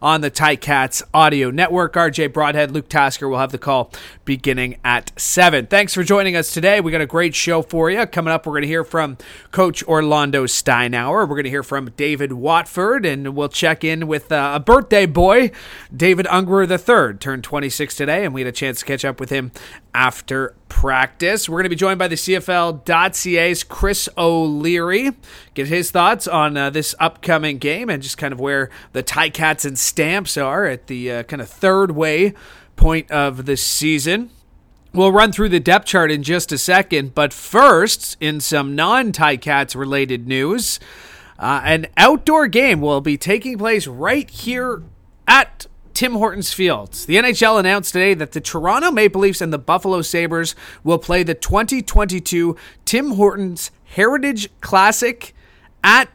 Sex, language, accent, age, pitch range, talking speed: male, English, American, 30-49, 140-190 Hz, 175 wpm